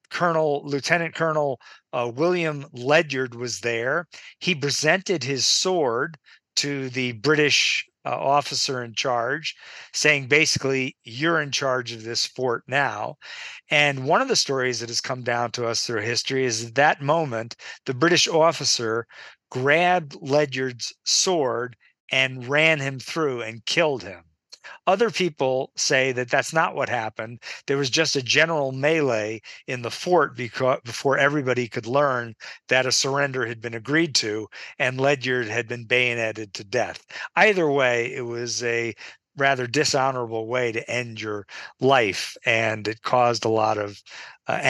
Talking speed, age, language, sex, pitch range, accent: 150 wpm, 50-69, English, male, 120-145 Hz, American